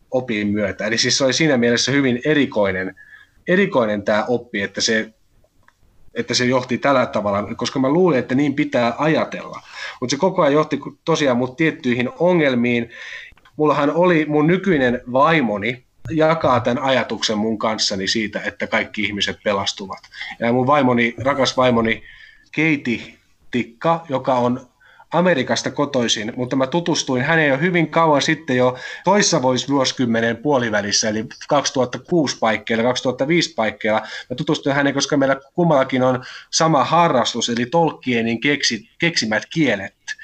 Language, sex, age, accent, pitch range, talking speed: Finnish, male, 30-49, native, 120-155 Hz, 135 wpm